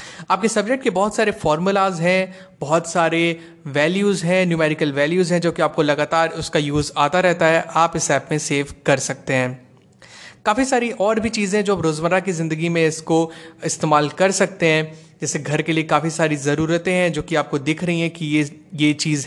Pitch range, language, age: 150-190 Hz, Hindi, 30-49